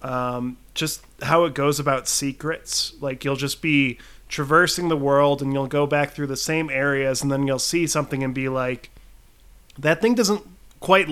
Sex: male